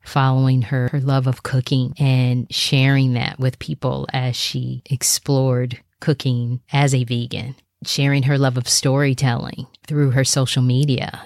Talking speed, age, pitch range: 145 wpm, 30-49, 125-135 Hz